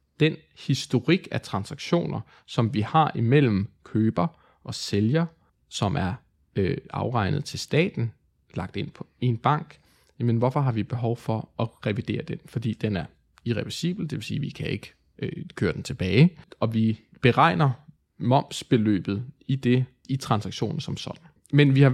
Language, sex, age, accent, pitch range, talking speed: Danish, male, 20-39, native, 110-145 Hz, 160 wpm